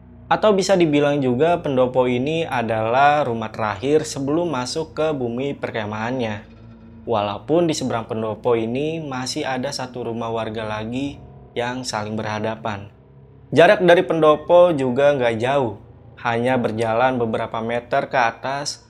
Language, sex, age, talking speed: Indonesian, male, 20-39, 125 wpm